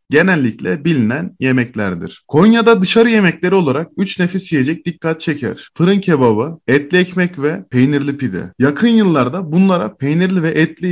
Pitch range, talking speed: 140-180 Hz, 135 wpm